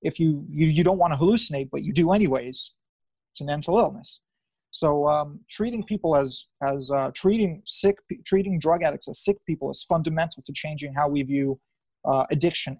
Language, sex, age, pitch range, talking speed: English, male, 30-49, 145-180 Hz, 195 wpm